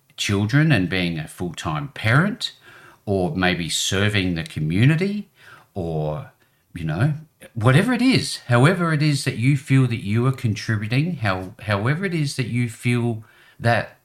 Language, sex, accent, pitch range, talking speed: English, male, Australian, 105-150 Hz, 150 wpm